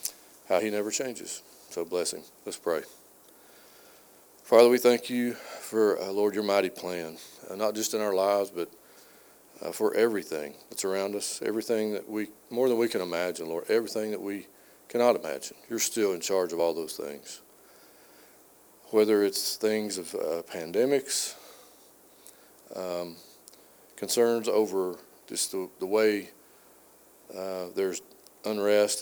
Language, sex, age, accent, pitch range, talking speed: English, male, 40-59, American, 90-110 Hz, 145 wpm